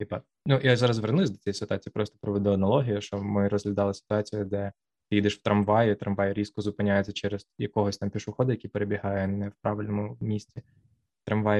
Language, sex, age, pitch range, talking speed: Ukrainian, male, 20-39, 100-115 Hz, 175 wpm